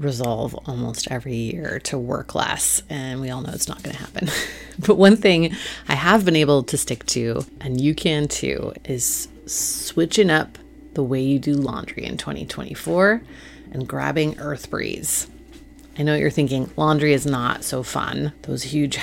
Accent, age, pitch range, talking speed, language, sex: American, 30-49, 130-165 Hz, 170 wpm, English, female